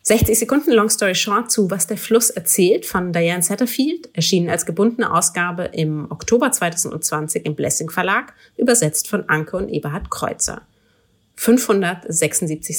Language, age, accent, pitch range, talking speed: German, 30-49, German, 165-220 Hz, 140 wpm